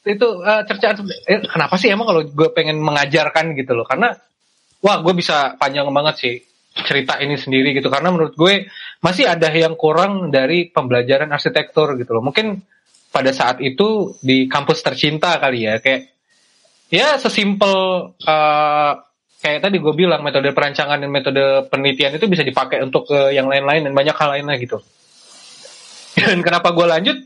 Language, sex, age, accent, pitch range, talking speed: Indonesian, male, 20-39, native, 140-185 Hz, 165 wpm